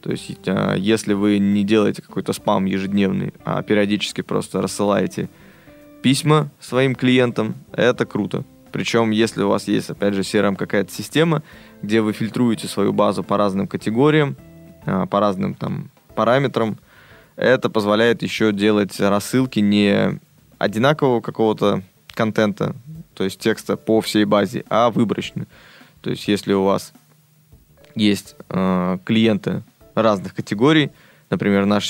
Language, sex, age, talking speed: Russian, male, 20-39, 130 wpm